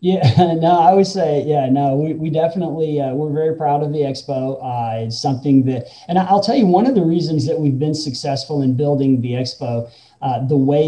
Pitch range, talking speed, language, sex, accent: 130-150 Hz, 220 wpm, English, male, American